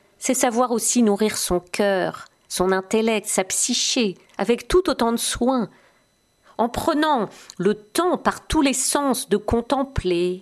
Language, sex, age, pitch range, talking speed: French, female, 50-69, 195-260 Hz, 145 wpm